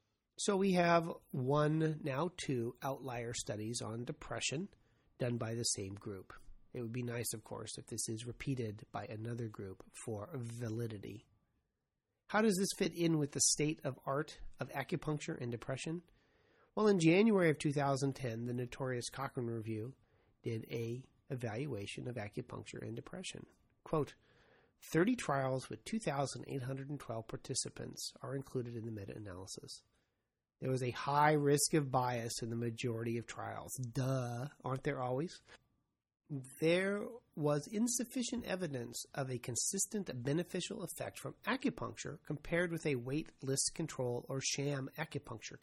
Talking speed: 140 wpm